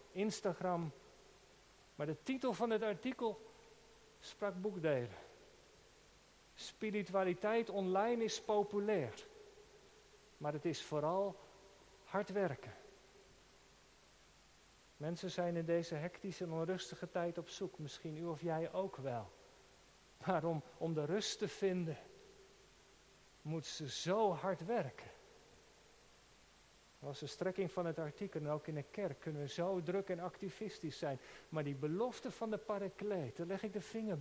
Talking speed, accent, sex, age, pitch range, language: 135 wpm, Dutch, male, 50-69, 150-200 Hz, Dutch